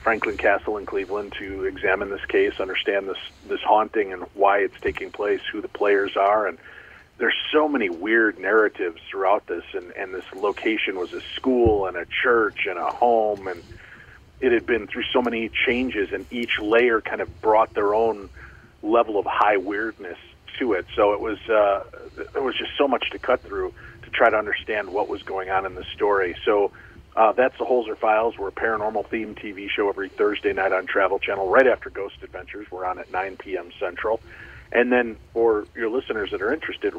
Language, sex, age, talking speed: English, male, 40-59, 200 wpm